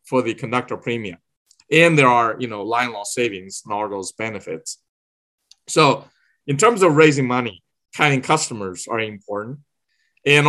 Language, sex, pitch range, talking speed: English, male, 115-135 Hz, 155 wpm